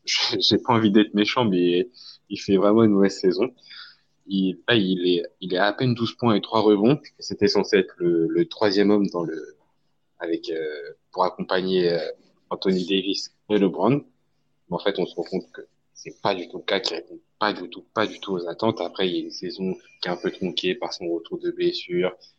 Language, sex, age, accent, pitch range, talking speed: French, male, 20-39, French, 90-150 Hz, 220 wpm